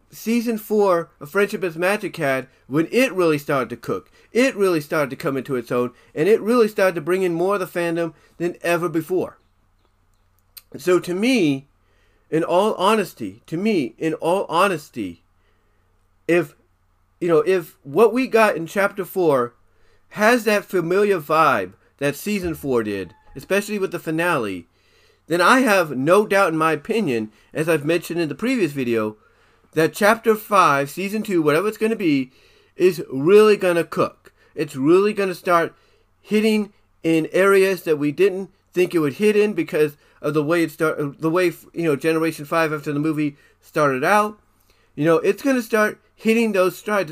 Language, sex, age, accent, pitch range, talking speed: English, male, 40-59, American, 150-205 Hz, 175 wpm